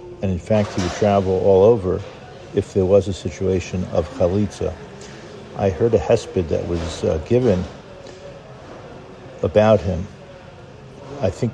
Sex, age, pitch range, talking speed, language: male, 50-69, 90-105 Hz, 140 wpm, English